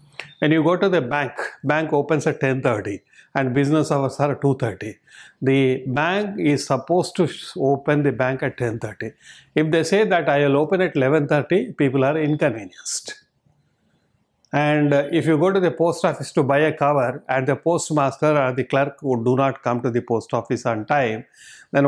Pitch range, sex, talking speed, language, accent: 130-150 Hz, male, 180 wpm, Telugu, native